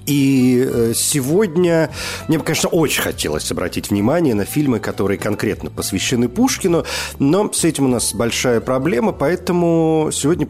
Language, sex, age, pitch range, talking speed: Russian, male, 40-59, 105-140 Hz, 135 wpm